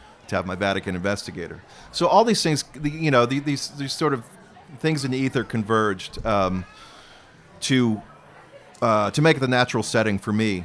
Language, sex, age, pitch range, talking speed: English, male, 40-59, 100-140 Hz, 170 wpm